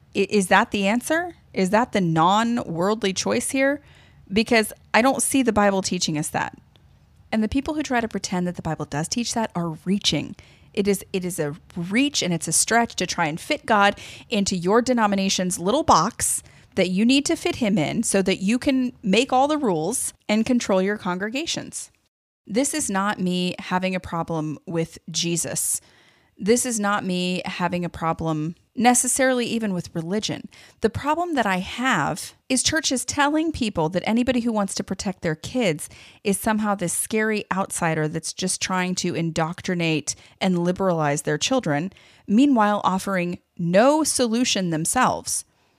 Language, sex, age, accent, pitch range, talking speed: English, female, 30-49, American, 175-235 Hz, 170 wpm